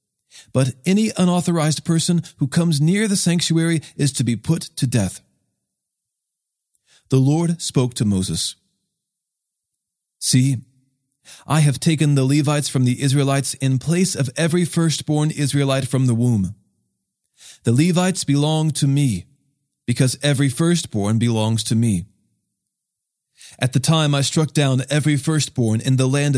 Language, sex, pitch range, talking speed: English, male, 125-155 Hz, 135 wpm